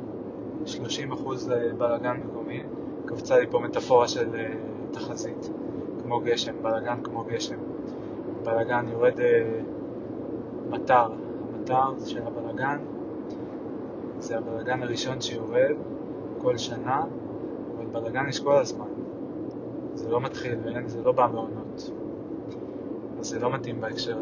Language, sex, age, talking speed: Hebrew, male, 20-39, 115 wpm